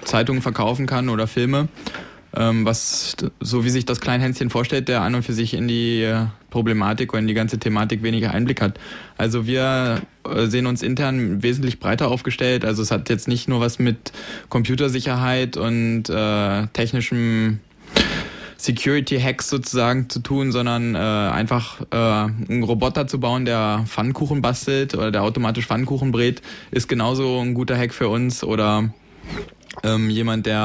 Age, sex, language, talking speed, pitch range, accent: 20-39, male, German, 155 wpm, 110-125 Hz, German